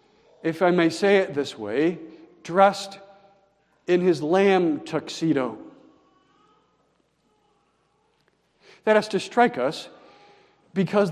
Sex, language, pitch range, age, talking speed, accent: male, English, 135-210 Hz, 50-69, 95 wpm, American